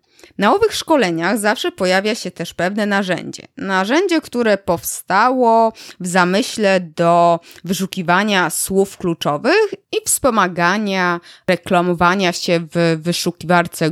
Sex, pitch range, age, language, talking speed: female, 165-215 Hz, 20-39, Polish, 105 wpm